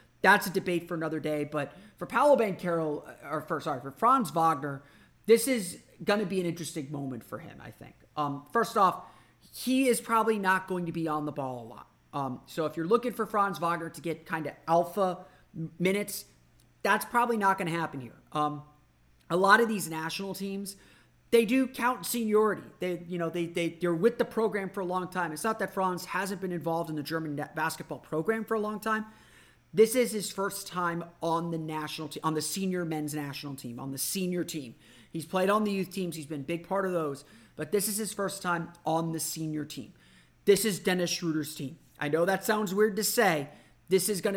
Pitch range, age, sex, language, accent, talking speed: 155-200 Hz, 30-49, male, English, American, 220 wpm